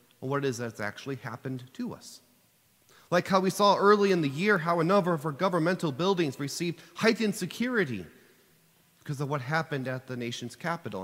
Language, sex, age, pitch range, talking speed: English, male, 30-49, 125-185 Hz, 185 wpm